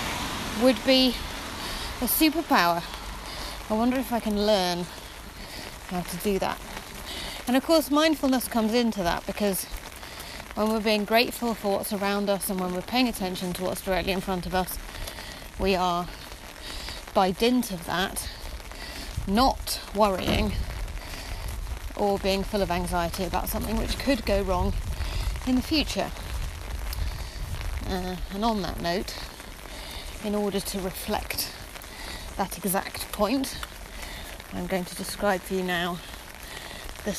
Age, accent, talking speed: 30-49, British, 135 wpm